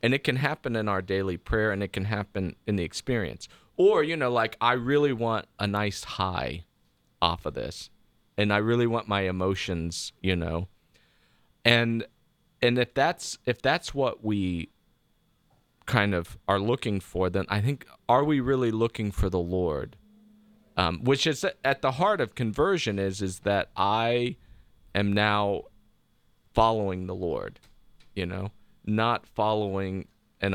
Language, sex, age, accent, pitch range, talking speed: English, male, 40-59, American, 90-115 Hz, 160 wpm